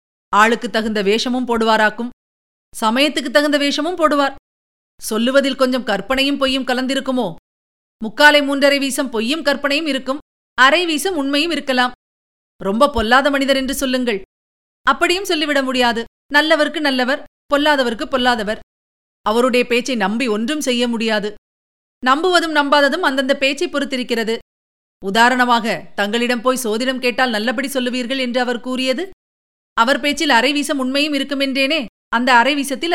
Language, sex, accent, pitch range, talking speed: Tamil, female, native, 230-280 Hz, 115 wpm